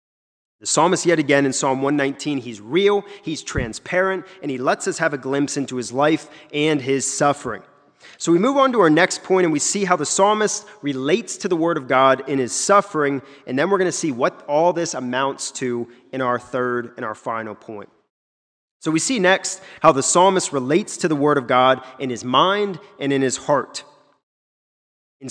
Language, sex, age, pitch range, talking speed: English, male, 30-49, 135-190 Hz, 205 wpm